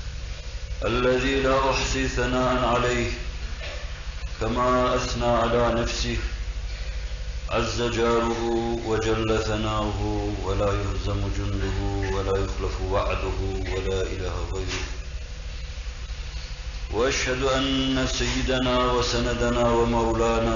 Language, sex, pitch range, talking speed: Turkish, male, 90-115 Hz, 75 wpm